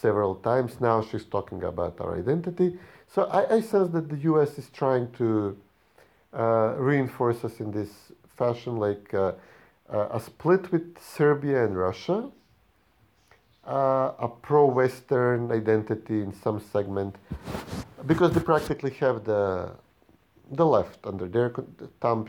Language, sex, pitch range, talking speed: English, male, 105-135 Hz, 135 wpm